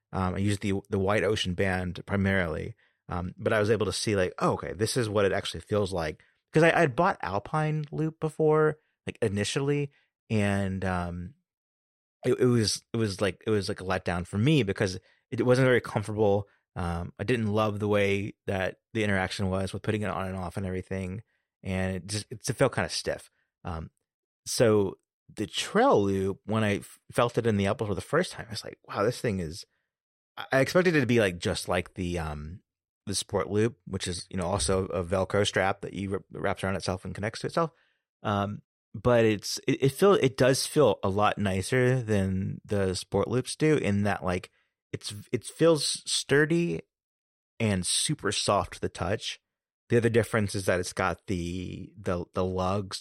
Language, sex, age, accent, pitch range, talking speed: English, male, 30-49, American, 95-115 Hz, 200 wpm